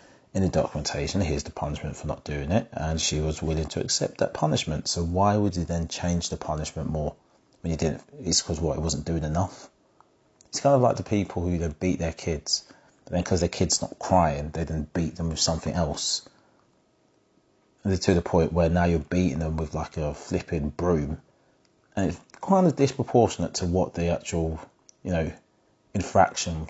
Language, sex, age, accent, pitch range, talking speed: English, male, 30-49, British, 80-105 Hz, 200 wpm